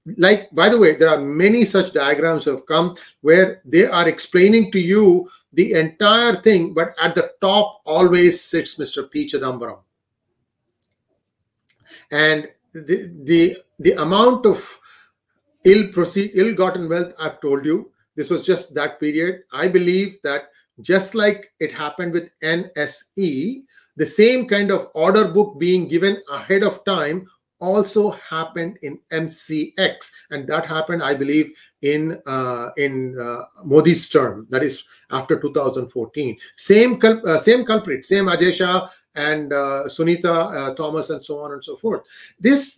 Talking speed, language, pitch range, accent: 150 wpm, English, 155-210 Hz, Indian